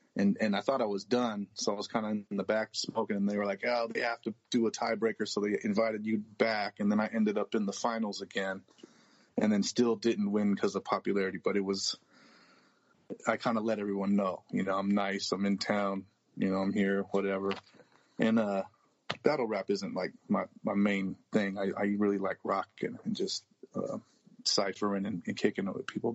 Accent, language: American, English